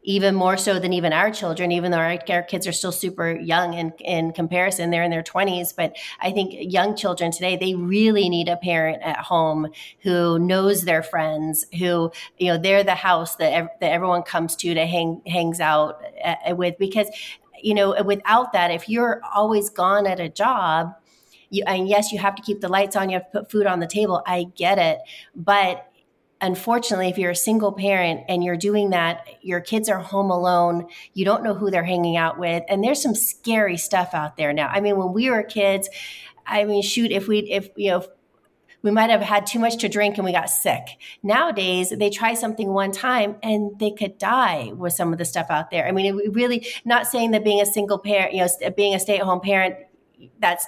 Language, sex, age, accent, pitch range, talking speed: English, female, 30-49, American, 175-205 Hz, 220 wpm